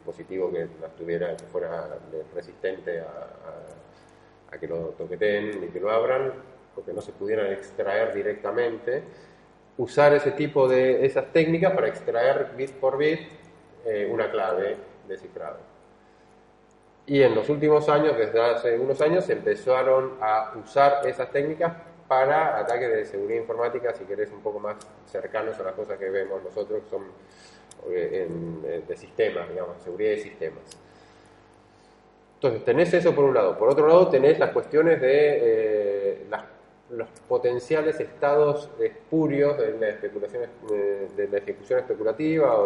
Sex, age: male, 30-49